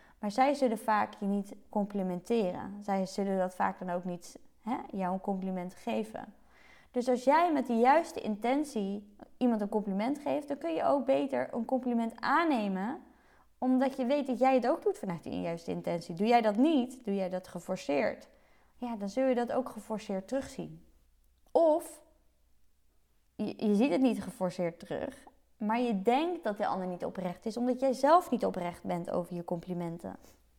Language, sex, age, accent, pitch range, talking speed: Dutch, female, 20-39, Dutch, 200-270 Hz, 180 wpm